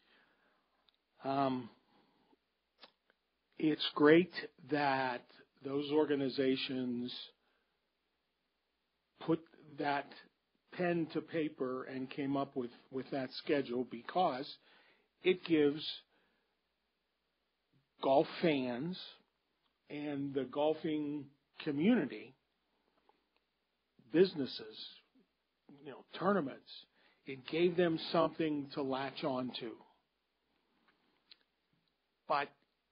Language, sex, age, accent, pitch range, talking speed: English, male, 50-69, American, 130-160 Hz, 75 wpm